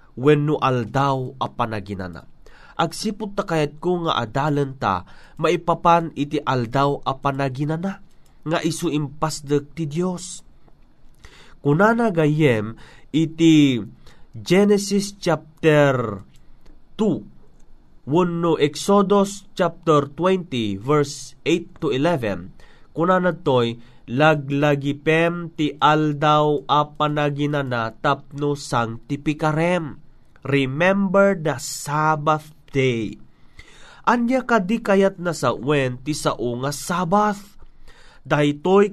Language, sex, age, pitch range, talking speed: Filipino, male, 30-49, 140-180 Hz, 90 wpm